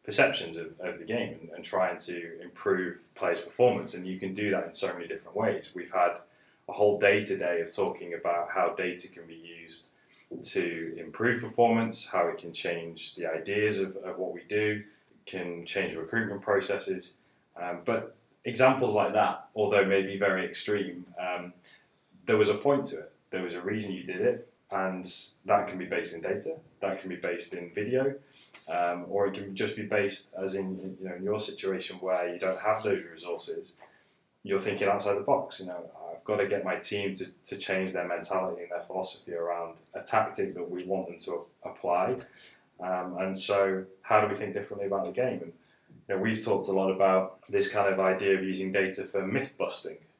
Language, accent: English, British